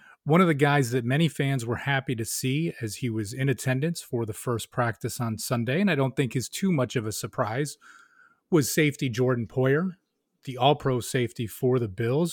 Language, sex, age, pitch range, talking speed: English, male, 30-49, 115-145 Hz, 205 wpm